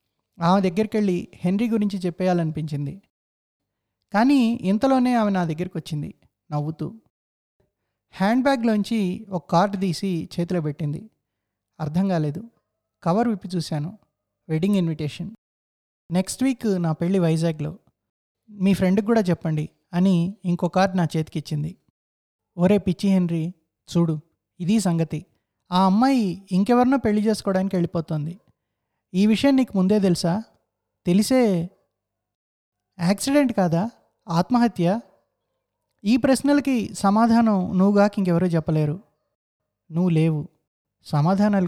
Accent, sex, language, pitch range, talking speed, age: native, male, Telugu, 160-205 Hz, 105 wpm, 20-39